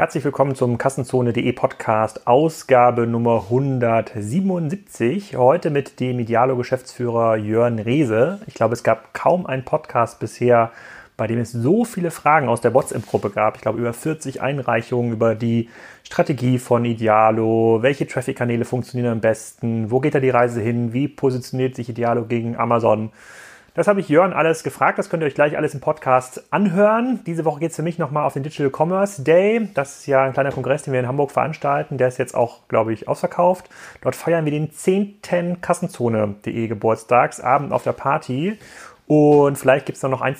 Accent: German